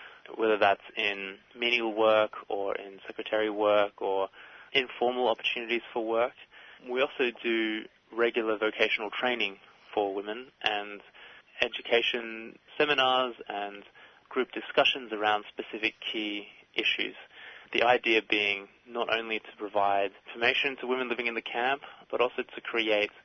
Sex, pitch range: male, 105-120 Hz